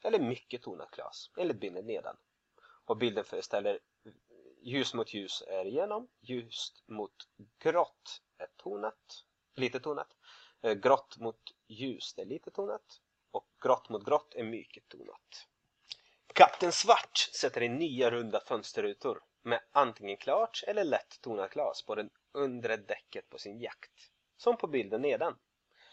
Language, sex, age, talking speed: Swedish, male, 30-49, 140 wpm